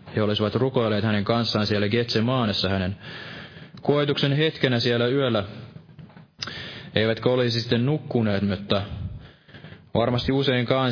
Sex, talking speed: male, 105 wpm